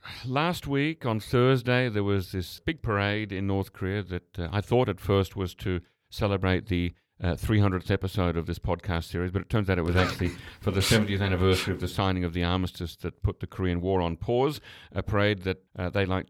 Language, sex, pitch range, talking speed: English, male, 90-115 Hz, 215 wpm